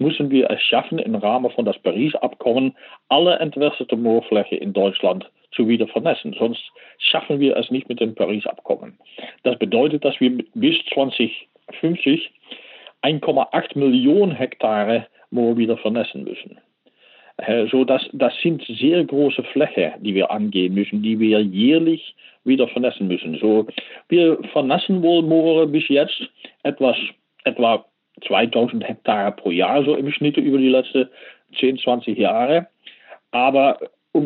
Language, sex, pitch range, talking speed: German, male, 115-150 Hz, 140 wpm